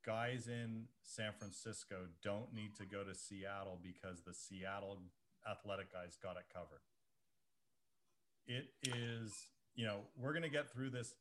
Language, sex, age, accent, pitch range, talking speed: English, male, 40-59, American, 105-125 Hz, 145 wpm